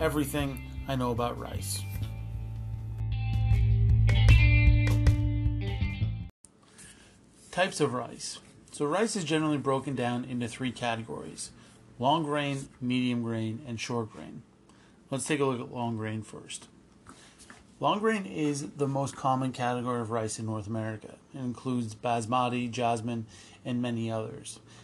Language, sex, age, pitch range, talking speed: English, male, 30-49, 110-135 Hz, 125 wpm